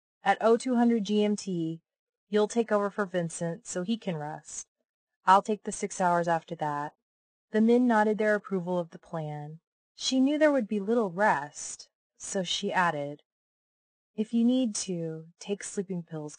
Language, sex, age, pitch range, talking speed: English, female, 30-49, 165-215 Hz, 160 wpm